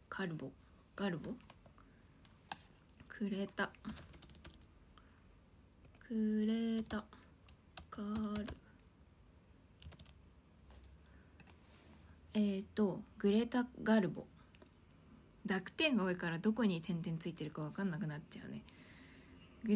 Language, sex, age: Japanese, female, 20-39